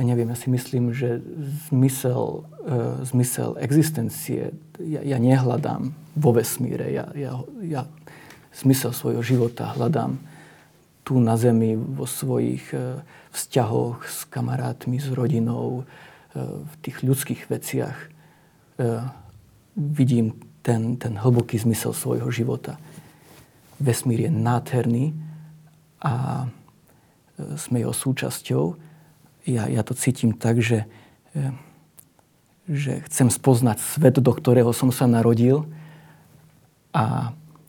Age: 40-59